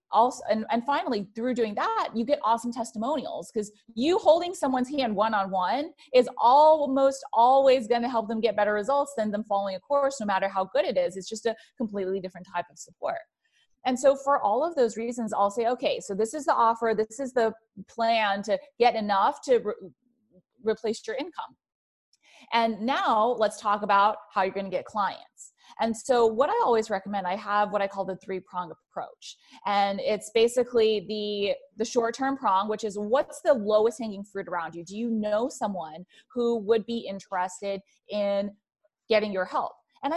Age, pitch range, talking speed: 30-49, 205-270 Hz, 185 wpm